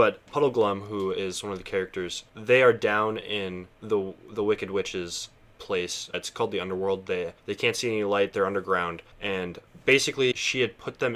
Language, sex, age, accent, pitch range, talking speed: English, male, 20-39, American, 100-125 Hz, 190 wpm